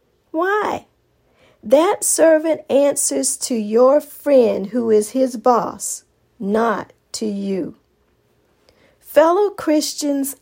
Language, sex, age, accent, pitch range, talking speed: English, female, 40-59, American, 190-280 Hz, 90 wpm